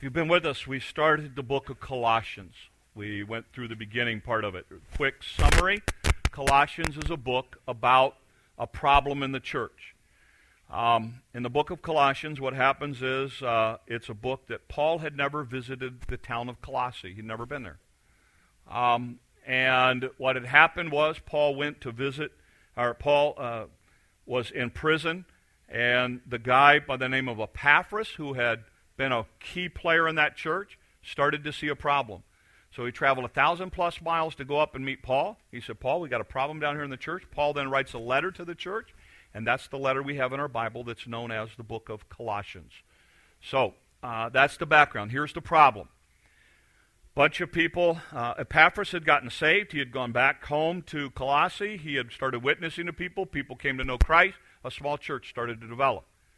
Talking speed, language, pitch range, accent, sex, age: 195 wpm, English, 120-150 Hz, American, male, 50-69